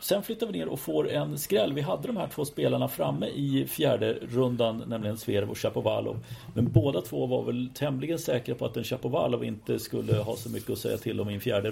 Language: Swedish